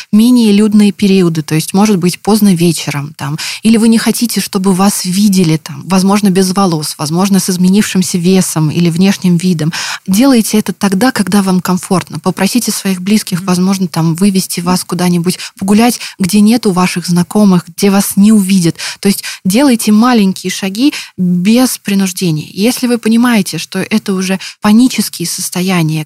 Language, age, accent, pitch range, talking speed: Russian, 20-39, native, 175-210 Hz, 150 wpm